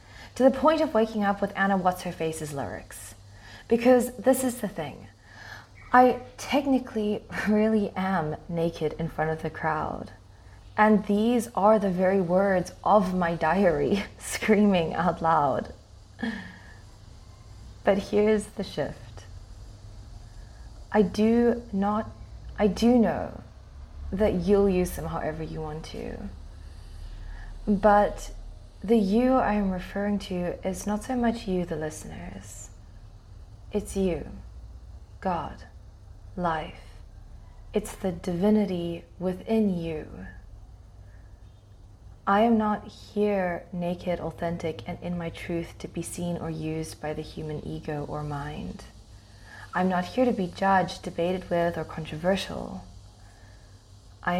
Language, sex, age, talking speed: English, female, 20-39, 125 wpm